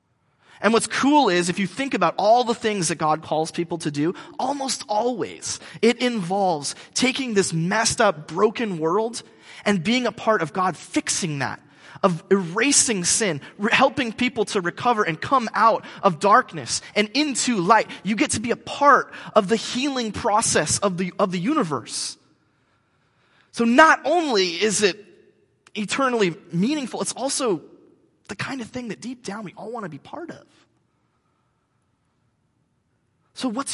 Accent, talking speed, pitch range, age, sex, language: American, 160 wpm, 170-235 Hz, 30-49, male, English